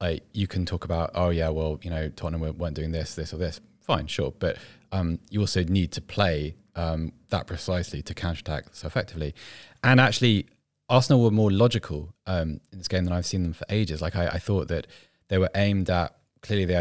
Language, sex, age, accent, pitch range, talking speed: English, male, 20-39, British, 80-105 Hz, 215 wpm